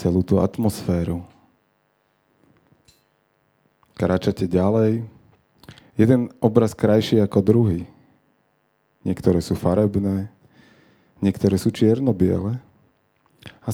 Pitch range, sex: 95-115 Hz, male